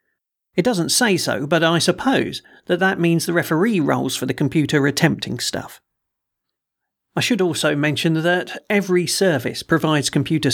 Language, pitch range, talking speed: English, 135-180 Hz, 155 wpm